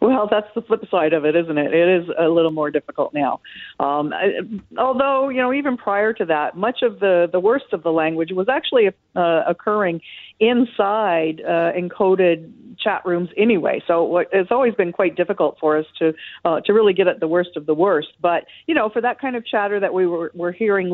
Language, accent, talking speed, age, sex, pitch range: English, American, 215 wpm, 50-69, female, 165-210 Hz